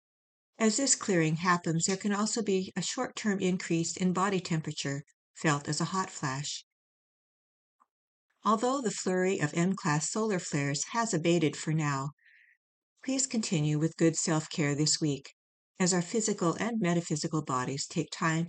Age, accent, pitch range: 60-79, American, 155-200 Hz